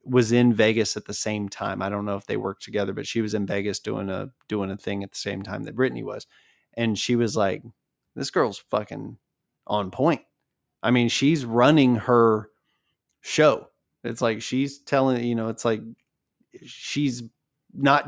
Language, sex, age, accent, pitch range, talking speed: English, male, 20-39, American, 105-130 Hz, 185 wpm